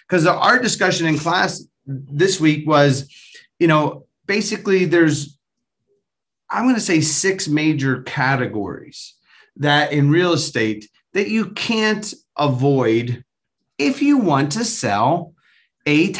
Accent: American